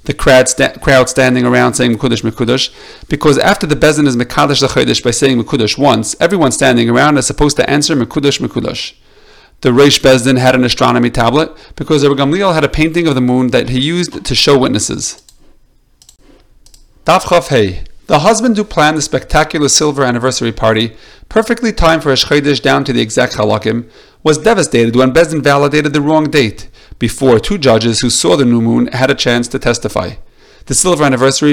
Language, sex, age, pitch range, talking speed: English, male, 40-59, 120-155 Hz, 180 wpm